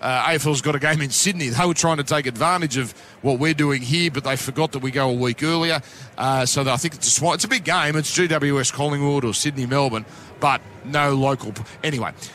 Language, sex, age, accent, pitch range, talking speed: English, male, 40-59, Australian, 135-170 Hz, 235 wpm